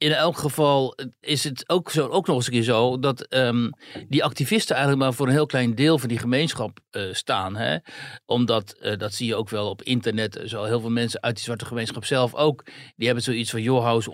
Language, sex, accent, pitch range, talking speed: Dutch, male, Dutch, 115-135 Hz, 240 wpm